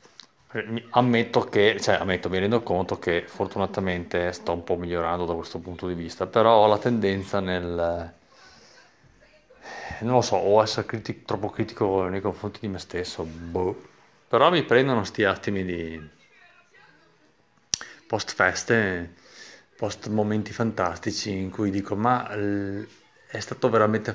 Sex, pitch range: male, 100-125 Hz